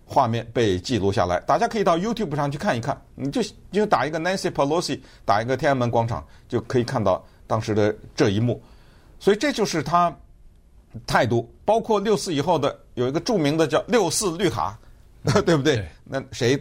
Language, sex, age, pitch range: Chinese, male, 50-69, 105-150 Hz